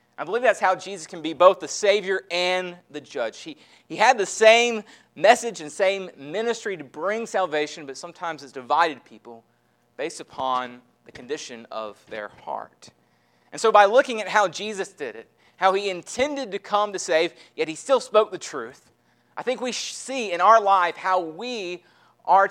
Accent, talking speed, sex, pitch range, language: American, 185 wpm, male, 150-210 Hz, English